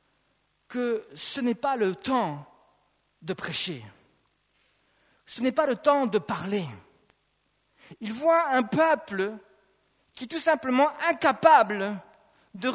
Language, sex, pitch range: French, male, 235-305 Hz